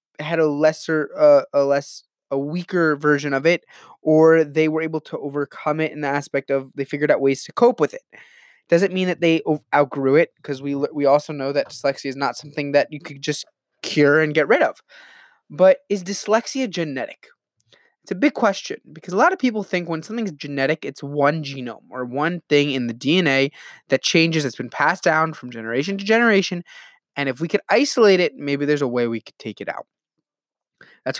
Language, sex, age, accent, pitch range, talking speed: English, male, 20-39, American, 135-165 Hz, 210 wpm